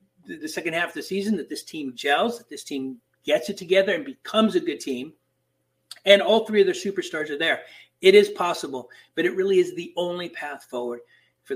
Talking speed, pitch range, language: 215 wpm, 145-235 Hz, English